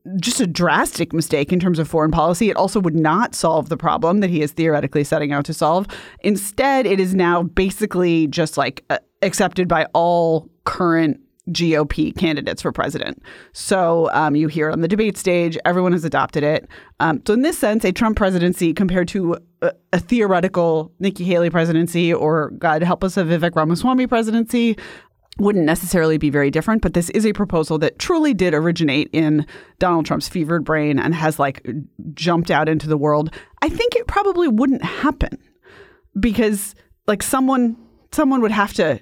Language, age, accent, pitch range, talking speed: English, 30-49, American, 160-205 Hz, 180 wpm